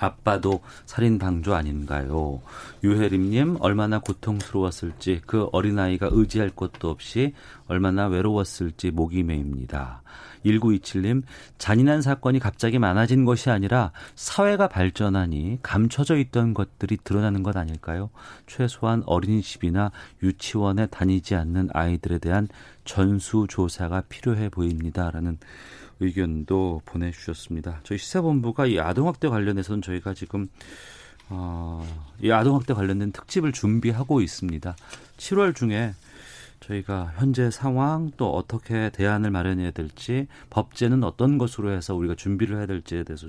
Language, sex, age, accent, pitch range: Korean, male, 40-59, native, 90-120 Hz